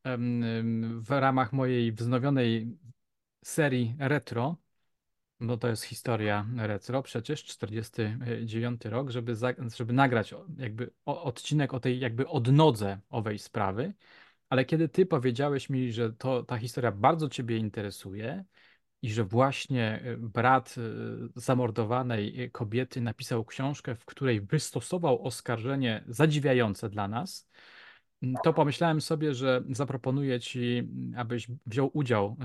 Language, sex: Polish, male